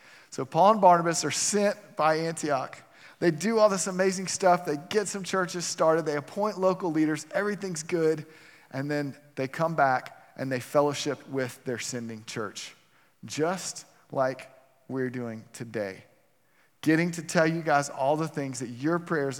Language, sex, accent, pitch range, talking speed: English, male, American, 135-175 Hz, 165 wpm